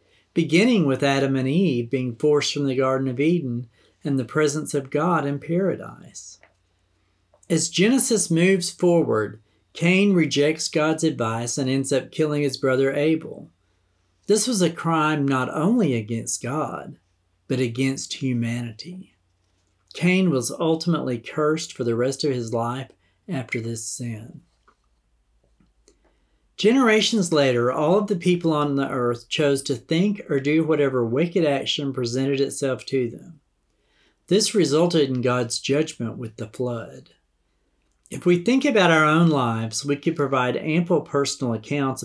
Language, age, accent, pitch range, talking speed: English, 40-59, American, 120-165 Hz, 145 wpm